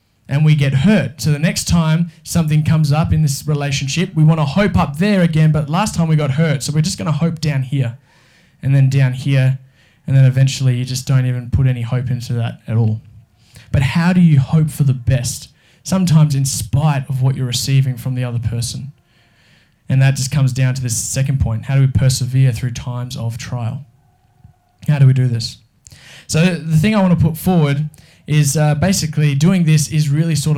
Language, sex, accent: English, male, Australian